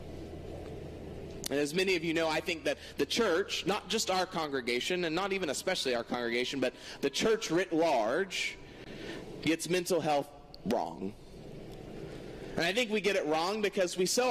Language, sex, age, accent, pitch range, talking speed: English, male, 30-49, American, 135-195 Hz, 170 wpm